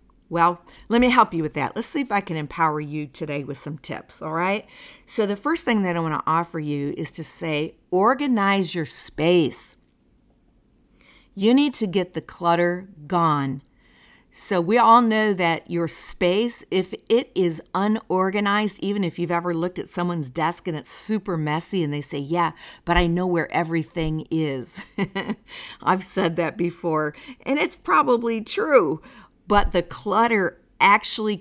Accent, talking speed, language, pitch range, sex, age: American, 165 wpm, English, 160-215 Hz, female, 50-69